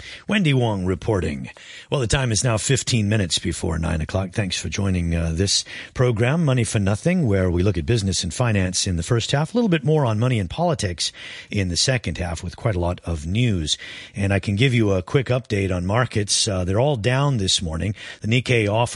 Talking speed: 220 wpm